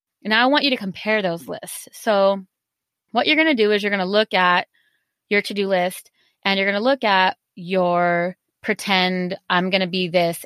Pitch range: 180-230 Hz